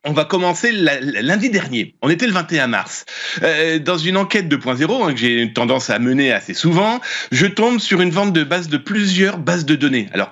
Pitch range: 140-185 Hz